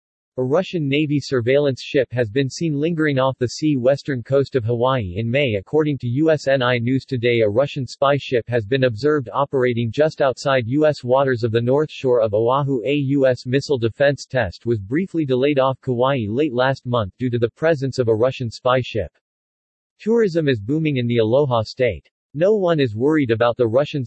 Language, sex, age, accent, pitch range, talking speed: English, male, 40-59, American, 120-145 Hz, 190 wpm